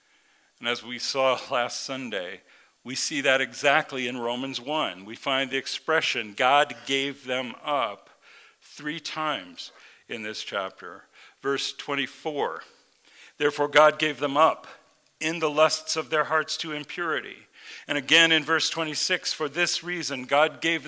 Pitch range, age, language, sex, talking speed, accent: 120-160 Hz, 50-69, English, male, 145 wpm, American